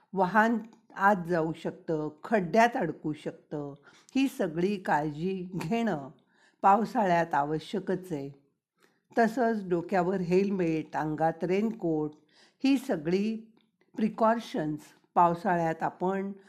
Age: 50-69